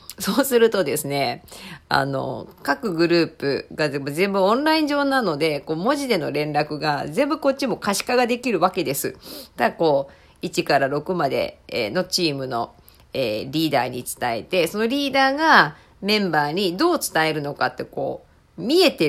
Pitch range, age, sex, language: 150-235 Hz, 40-59, female, Japanese